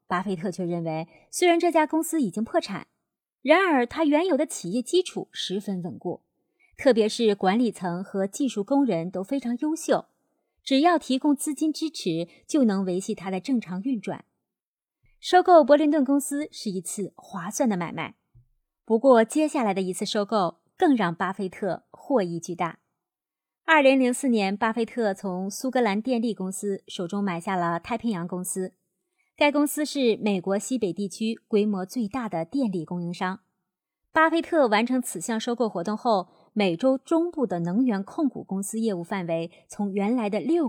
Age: 30-49